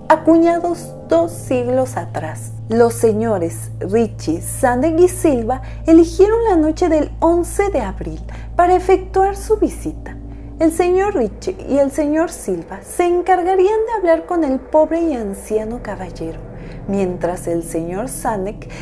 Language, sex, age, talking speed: Spanish, female, 30-49, 135 wpm